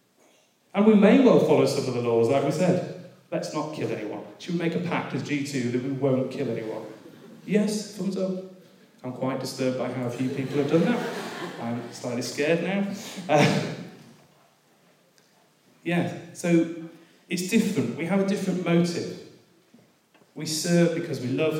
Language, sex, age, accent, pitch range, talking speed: English, male, 30-49, British, 130-175 Hz, 170 wpm